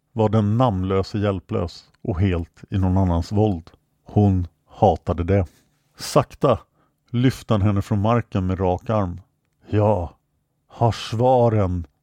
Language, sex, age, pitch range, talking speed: English, male, 50-69, 95-125 Hz, 125 wpm